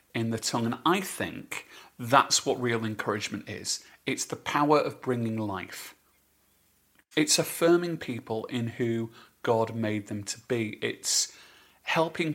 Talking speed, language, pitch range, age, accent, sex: 140 wpm, English, 115-150 Hz, 40-59, British, male